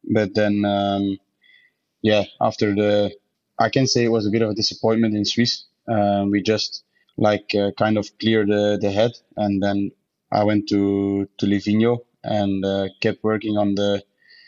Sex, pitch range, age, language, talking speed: male, 100-115 Hz, 20-39, English, 180 wpm